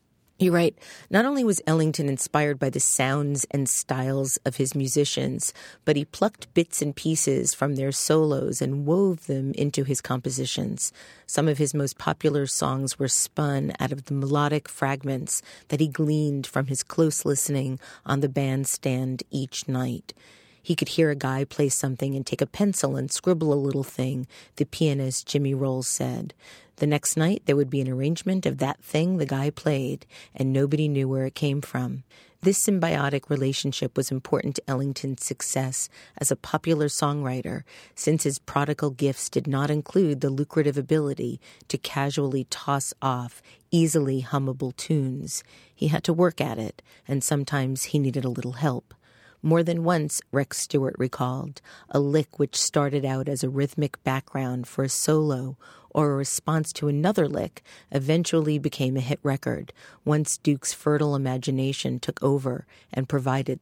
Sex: female